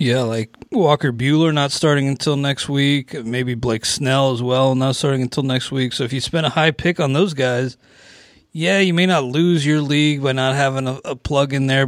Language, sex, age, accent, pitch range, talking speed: English, male, 30-49, American, 120-150 Hz, 215 wpm